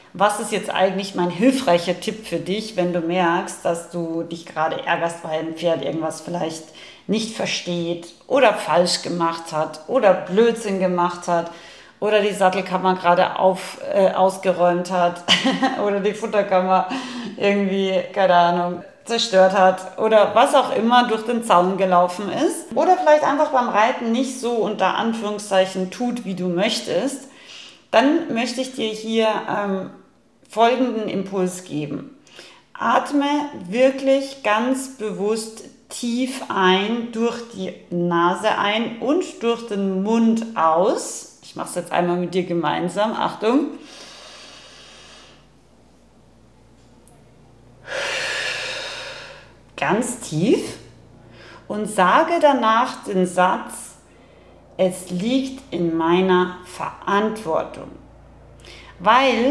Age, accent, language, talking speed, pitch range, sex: 40-59, German, German, 115 wpm, 175-235 Hz, female